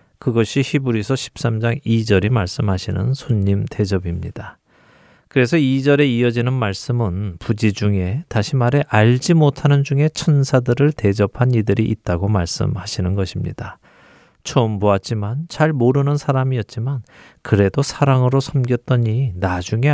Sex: male